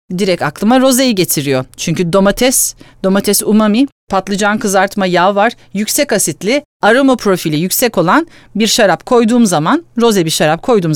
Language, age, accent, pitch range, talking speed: Turkish, 40-59, native, 160-225 Hz, 140 wpm